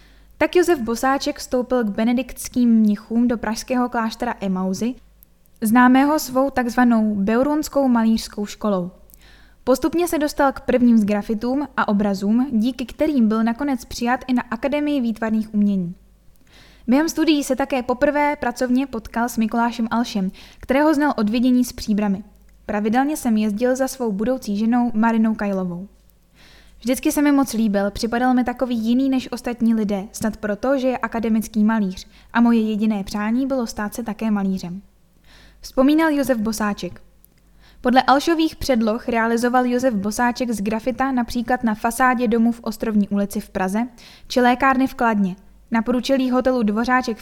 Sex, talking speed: female, 145 wpm